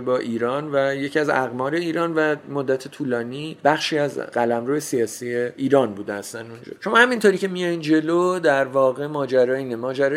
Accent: Canadian